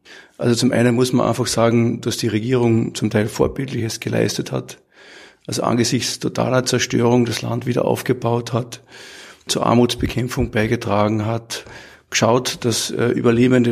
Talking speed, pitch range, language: 135 wpm, 115-130 Hz, English